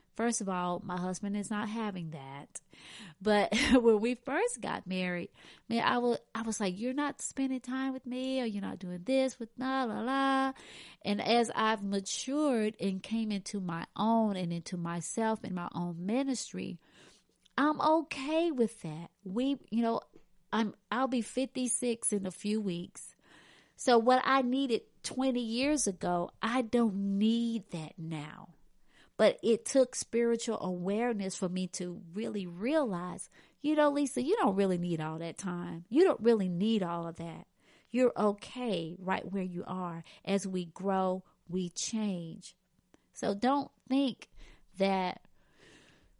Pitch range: 185-250 Hz